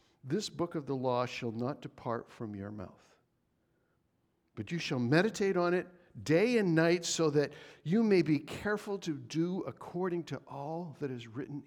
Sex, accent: male, American